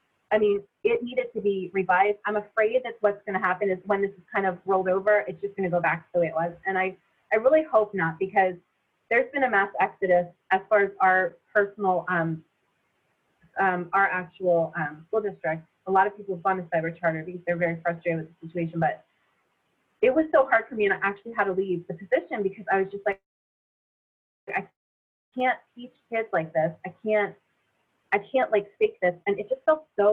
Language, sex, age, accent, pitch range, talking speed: English, female, 30-49, American, 180-225 Hz, 220 wpm